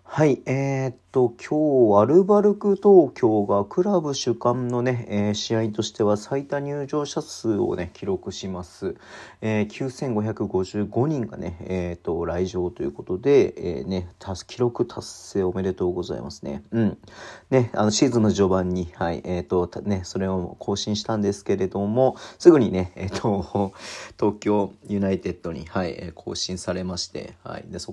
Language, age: Japanese, 40-59